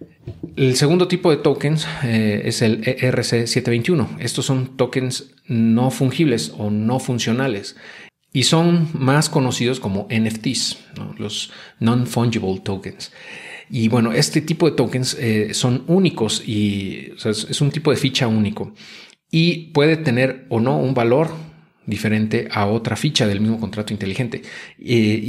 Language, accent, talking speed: Spanish, Mexican, 150 wpm